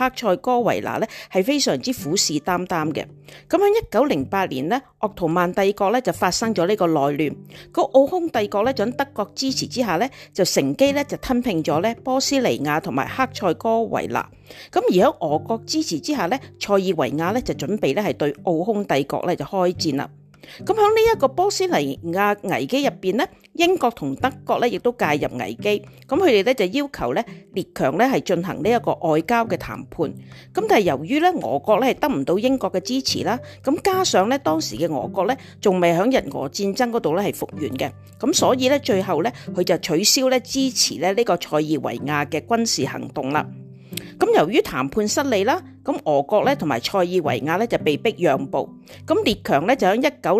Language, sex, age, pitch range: Chinese, female, 50-69, 170-260 Hz